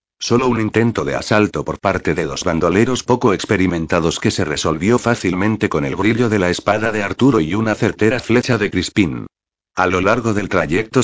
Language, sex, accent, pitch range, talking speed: Spanish, male, Spanish, 95-115 Hz, 190 wpm